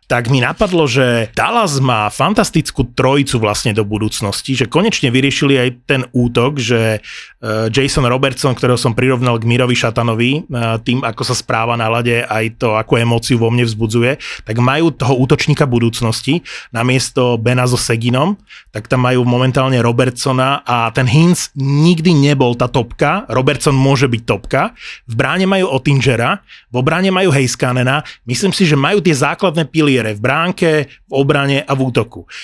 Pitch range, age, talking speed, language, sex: 120-145 Hz, 30-49, 160 wpm, Slovak, male